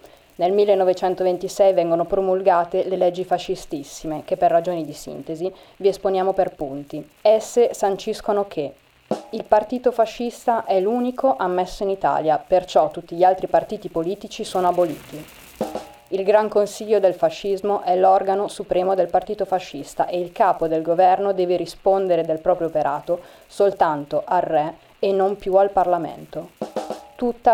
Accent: native